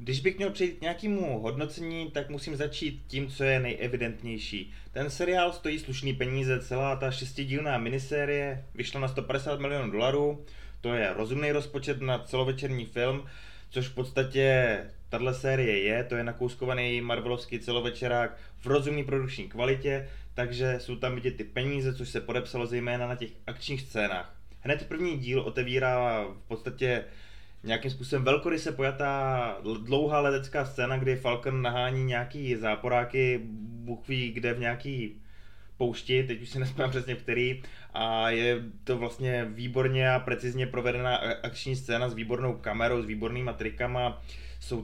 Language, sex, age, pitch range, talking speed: Czech, male, 20-39, 120-135 Hz, 145 wpm